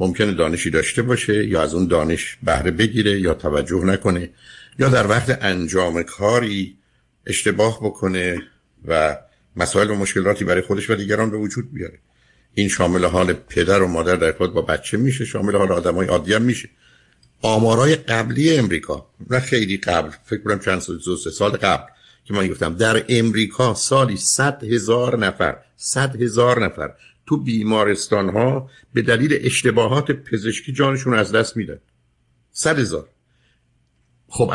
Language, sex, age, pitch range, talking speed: Persian, male, 60-79, 95-125 Hz, 150 wpm